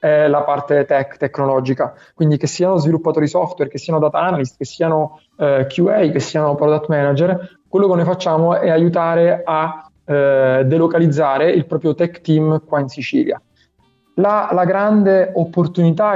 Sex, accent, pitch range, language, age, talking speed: male, native, 145-165 Hz, Italian, 20-39, 150 wpm